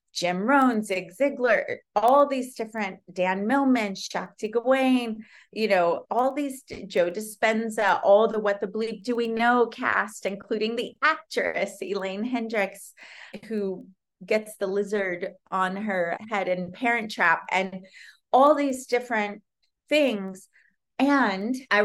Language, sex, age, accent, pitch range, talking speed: English, female, 30-49, American, 190-225 Hz, 130 wpm